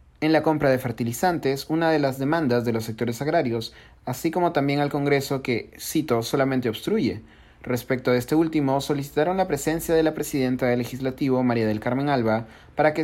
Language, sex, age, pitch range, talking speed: Spanish, male, 30-49, 115-155 Hz, 185 wpm